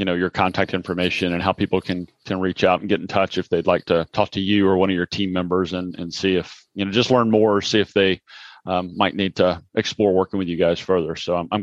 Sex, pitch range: male, 95-110 Hz